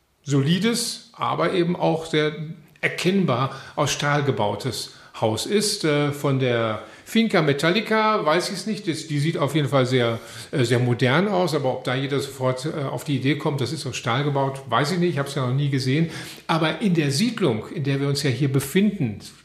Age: 50-69